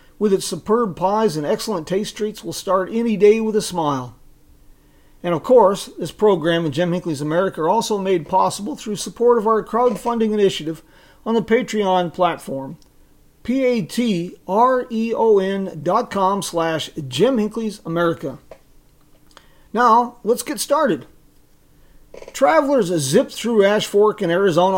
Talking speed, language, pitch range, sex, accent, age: 135 wpm, English, 165-215 Hz, male, American, 40-59